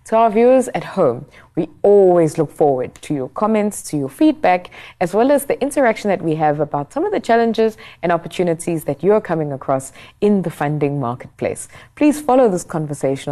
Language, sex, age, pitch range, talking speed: English, female, 20-39, 145-205 Hz, 195 wpm